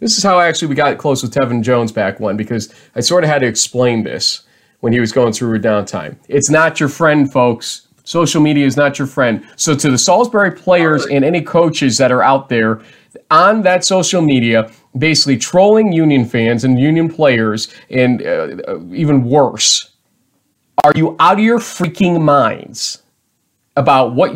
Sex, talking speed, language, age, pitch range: male, 180 wpm, English, 30-49, 125-170 Hz